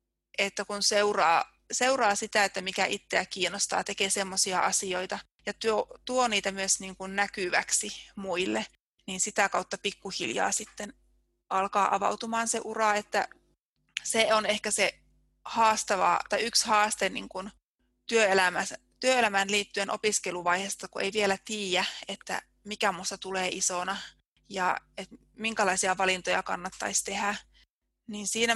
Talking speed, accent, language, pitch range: 130 wpm, native, Finnish, 195-225 Hz